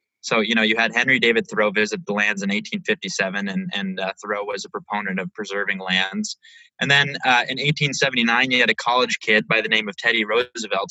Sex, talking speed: male, 215 wpm